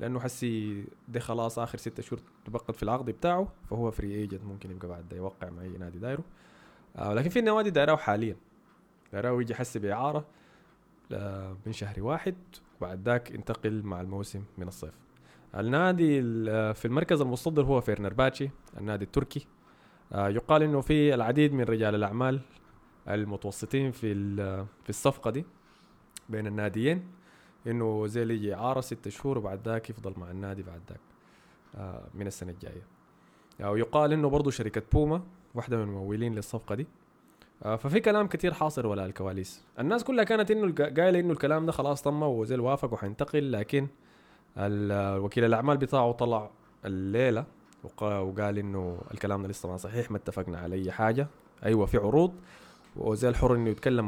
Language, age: Arabic, 20-39